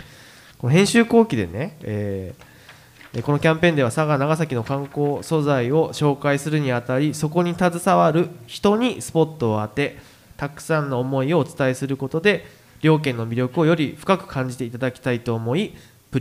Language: Japanese